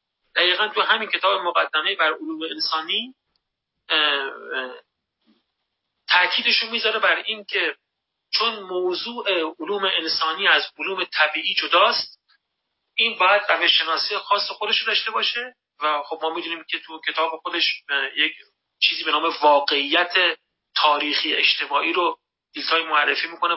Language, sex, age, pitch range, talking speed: Persian, male, 40-59, 170-230 Hz, 120 wpm